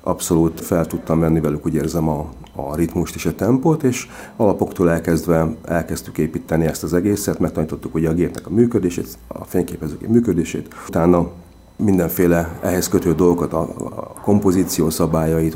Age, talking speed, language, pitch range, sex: 40-59, 145 wpm, Hungarian, 80-90 Hz, male